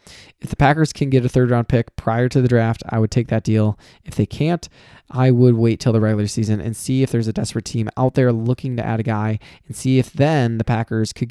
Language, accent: English, American